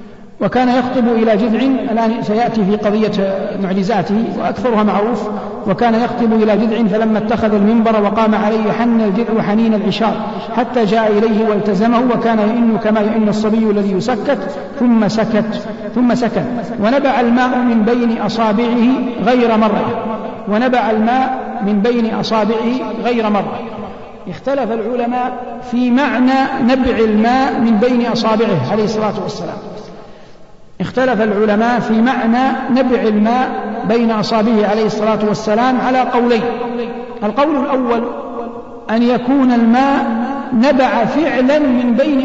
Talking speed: 125 wpm